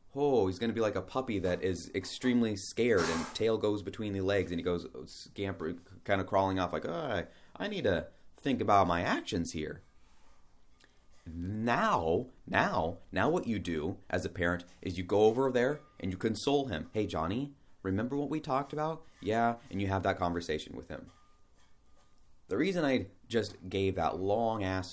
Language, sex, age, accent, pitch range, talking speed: English, male, 30-49, American, 90-125 Hz, 185 wpm